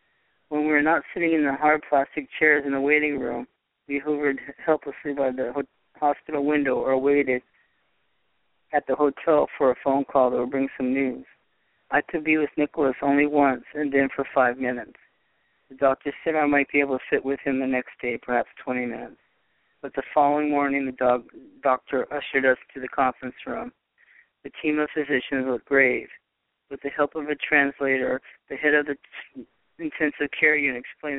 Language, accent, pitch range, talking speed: English, American, 135-150 Hz, 185 wpm